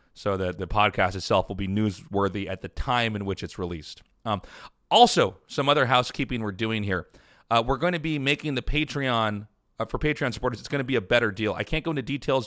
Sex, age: male, 30-49